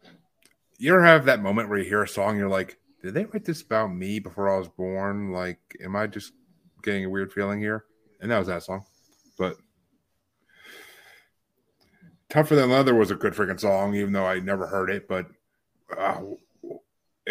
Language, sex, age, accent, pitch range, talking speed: English, male, 30-49, American, 95-125 Hz, 185 wpm